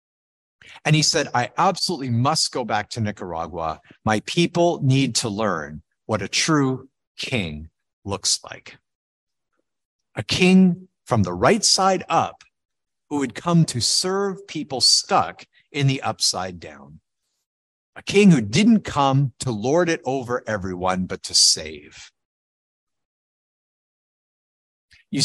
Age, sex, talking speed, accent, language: 50-69, male, 125 wpm, American, English